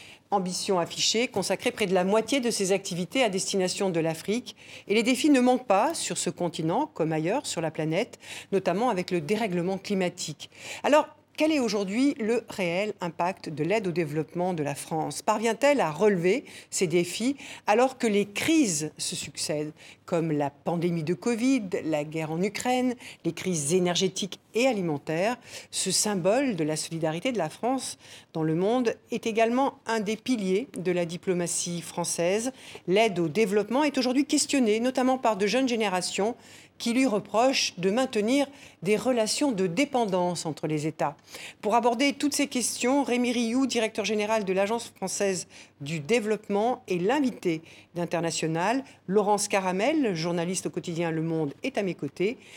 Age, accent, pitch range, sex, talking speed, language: 50-69, French, 175-240 Hz, female, 160 wpm, French